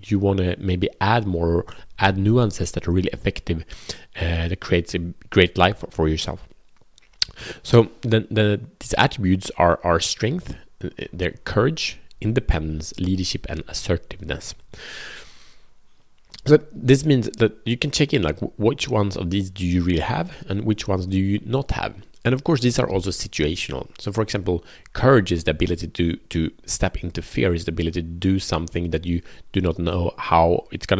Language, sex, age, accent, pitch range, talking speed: Swedish, male, 30-49, Norwegian, 85-105 Hz, 175 wpm